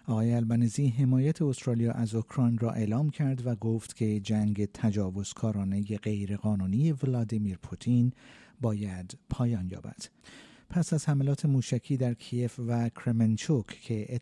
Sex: male